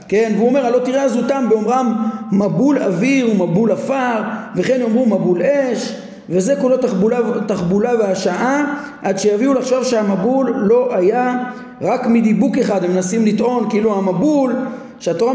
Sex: male